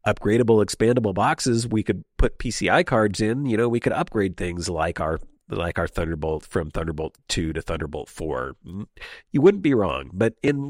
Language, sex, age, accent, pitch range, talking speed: English, male, 40-59, American, 90-125 Hz, 180 wpm